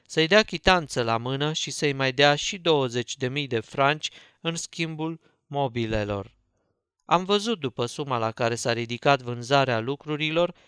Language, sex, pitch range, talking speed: Romanian, male, 125-160 Hz, 145 wpm